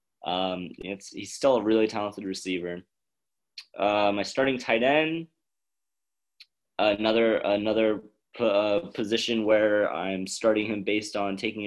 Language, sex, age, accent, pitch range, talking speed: English, male, 20-39, American, 100-125 Hz, 130 wpm